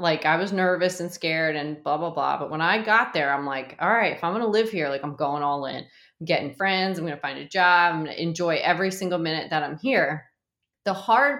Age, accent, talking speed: 30-49, American, 255 wpm